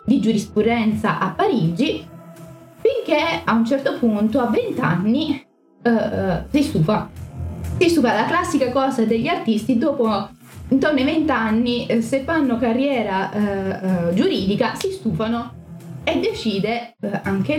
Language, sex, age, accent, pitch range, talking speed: Italian, female, 20-39, native, 200-280 Hz, 140 wpm